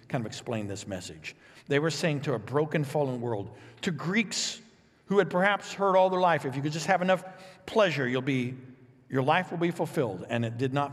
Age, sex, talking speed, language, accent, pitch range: 60-79, male, 220 wpm, English, American, 145-210 Hz